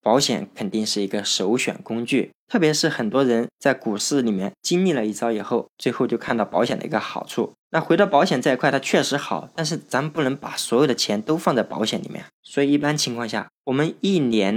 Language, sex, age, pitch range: Chinese, male, 20-39, 110-135 Hz